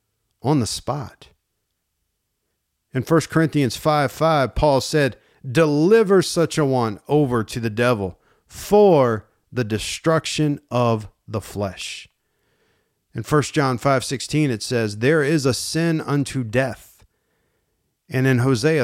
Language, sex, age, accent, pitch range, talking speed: English, male, 40-59, American, 105-155 Hz, 125 wpm